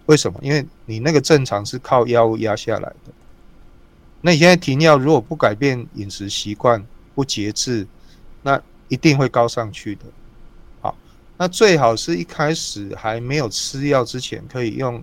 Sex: male